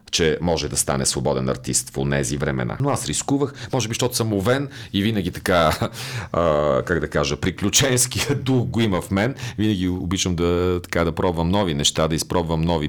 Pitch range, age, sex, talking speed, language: 75-110 Hz, 40-59, male, 190 wpm, Bulgarian